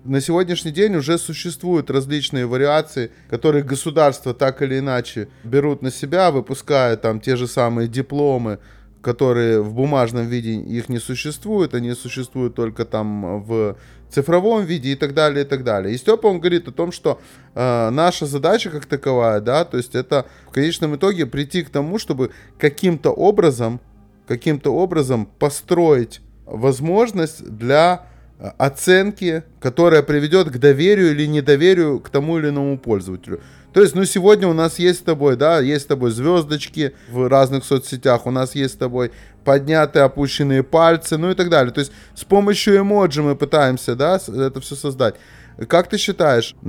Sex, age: male, 20-39